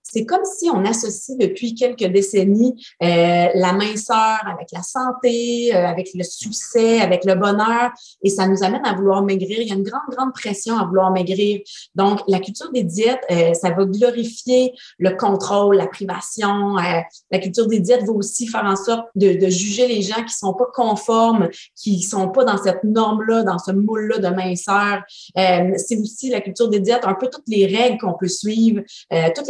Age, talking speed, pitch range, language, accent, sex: 30-49, 205 wpm, 185-230 Hz, French, Canadian, female